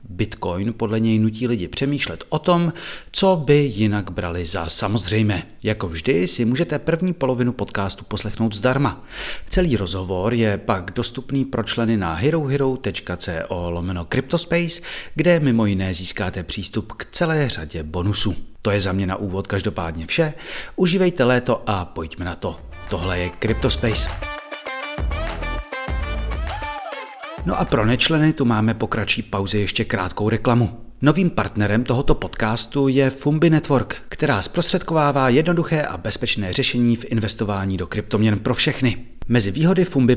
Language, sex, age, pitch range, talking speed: Czech, male, 30-49, 100-140 Hz, 140 wpm